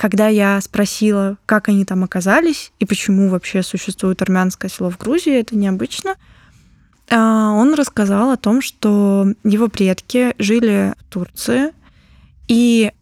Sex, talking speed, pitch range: female, 130 wpm, 195-220 Hz